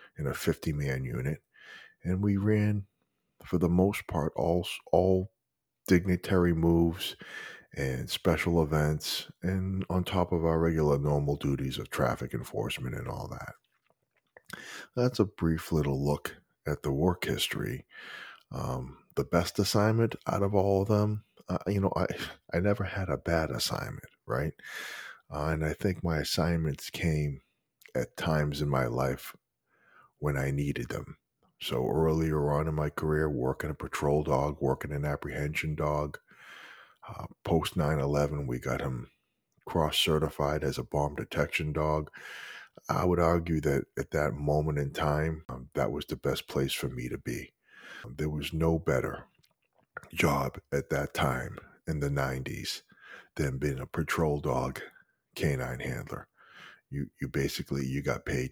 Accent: American